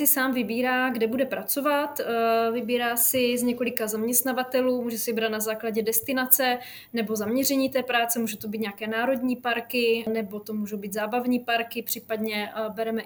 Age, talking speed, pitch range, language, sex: 20-39, 155 wpm, 220-245 Hz, Czech, female